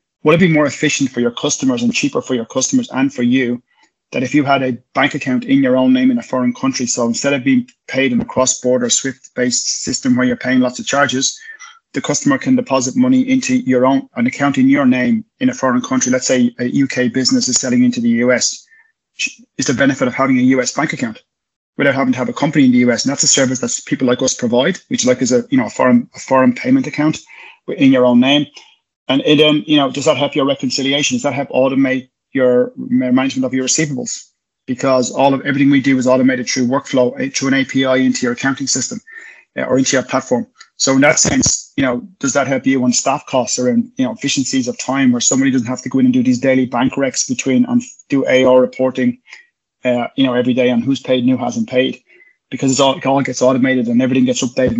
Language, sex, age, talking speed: English, male, 20-39, 235 wpm